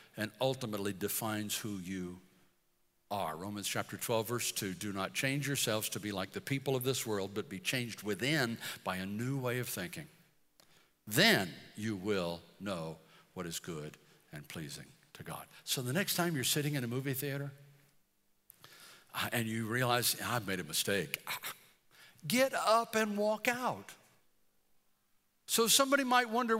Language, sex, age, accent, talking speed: English, male, 60-79, American, 160 wpm